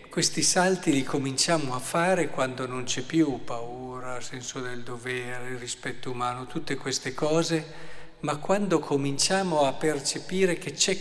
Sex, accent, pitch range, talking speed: male, native, 130-170 Hz, 140 wpm